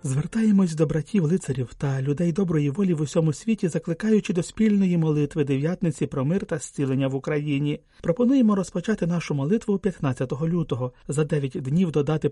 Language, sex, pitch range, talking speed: Ukrainian, male, 145-190 Hz, 150 wpm